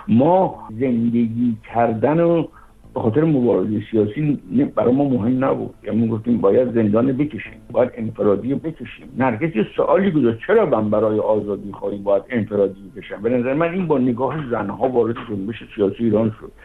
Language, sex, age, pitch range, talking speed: Persian, male, 60-79, 110-145 Hz, 160 wpm